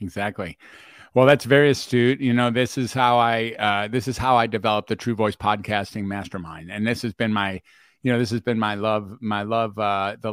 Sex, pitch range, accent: male, 105-125 Hz, American